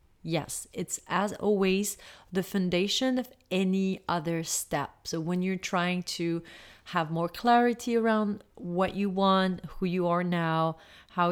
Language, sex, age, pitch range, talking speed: English, female, 30-49, 165-195 Hz, 145 wpm